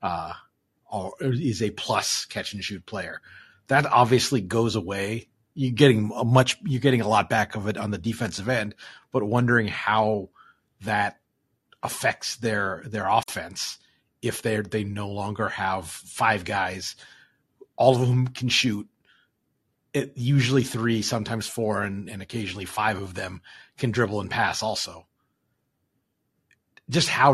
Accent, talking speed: American, 145 wpm